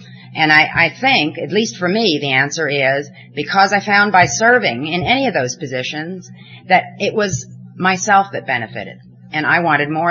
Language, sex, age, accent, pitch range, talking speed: English, female, 40-59, American, 130-170 Hz, 185 wpm